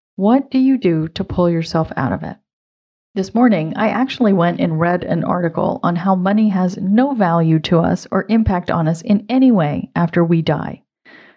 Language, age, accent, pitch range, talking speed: English, 40-59, American, 165-220 Hz, 195 wpm